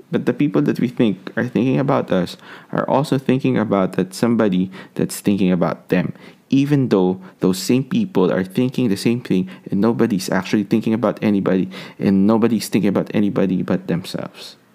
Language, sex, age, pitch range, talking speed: Filipino, male, 20-39, 95-120 Hz, 175 wpm